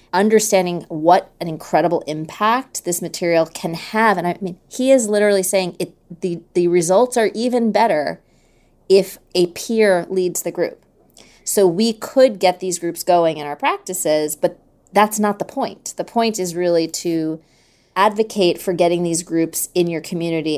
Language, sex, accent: English, female, American